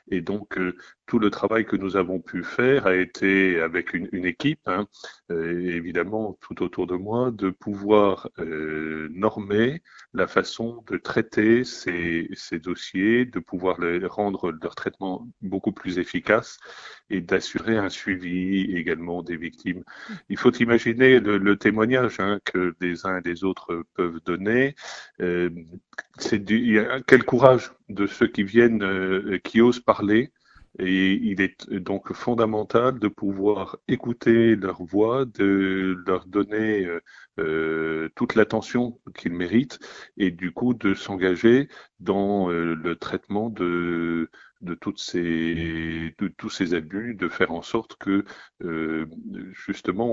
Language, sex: French, male